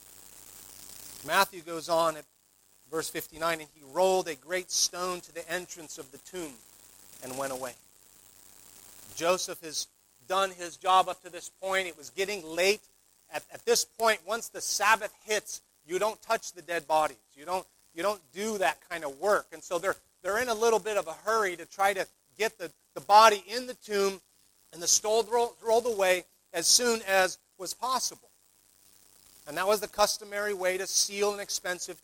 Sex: male